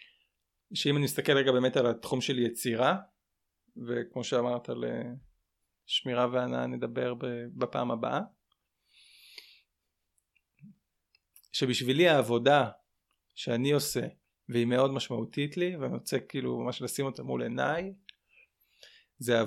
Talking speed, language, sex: 105 wpm, Hebrew, male